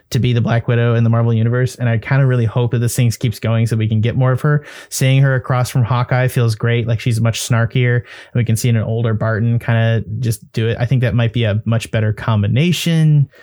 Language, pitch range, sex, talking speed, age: English, 115-145 Hz, male, 265 wpm, 20-39